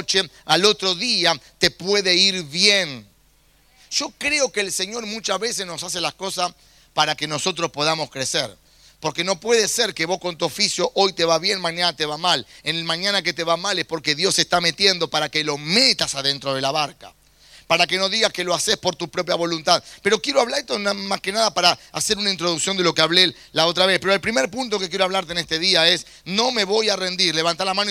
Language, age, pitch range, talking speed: English, 30-49, 160-200 Hz, 235 wpm